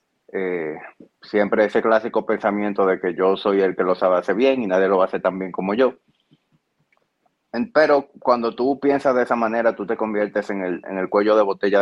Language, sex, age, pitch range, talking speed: Spanish, male, 30-49, 100-120 Hz, 200 wpm